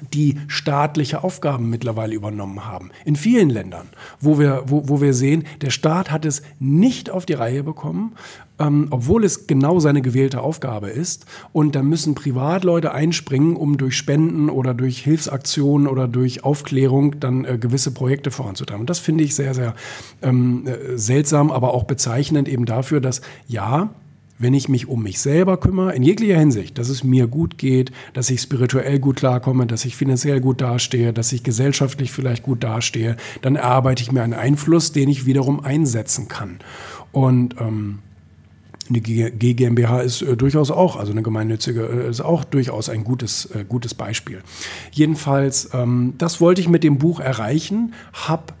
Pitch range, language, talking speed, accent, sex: 125-150 Hz, German, 170 wpm, German, male